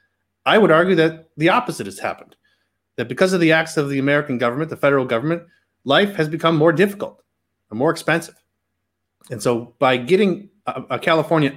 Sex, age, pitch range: male, 30-49, 125-175 Hz